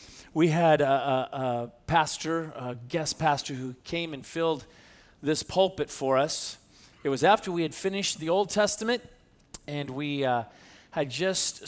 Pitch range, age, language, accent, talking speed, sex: 140-185 Hz, 40-59, English, American, 155 wpm, male